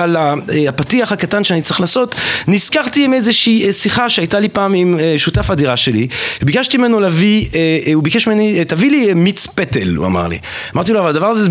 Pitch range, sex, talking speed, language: 160-225 Hz, male, 190 wpm, Hebrew